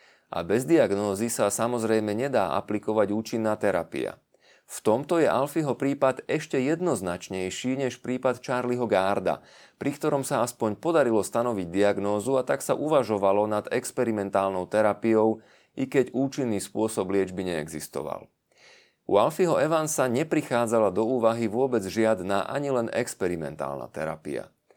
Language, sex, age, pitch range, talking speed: Slovak, male, 30-49, 100-130 Hz, 125 wpm